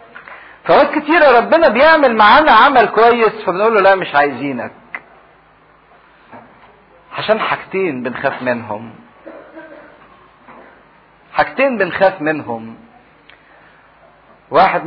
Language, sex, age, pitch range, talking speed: English, male, 50-69, 130-160 Hz, 80 wpm